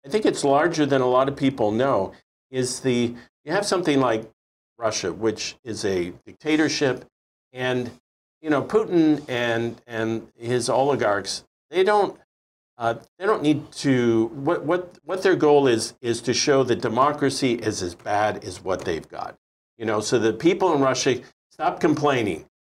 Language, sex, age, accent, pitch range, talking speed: English, male, 50-69, American, 115-145 Hz, 165 wpm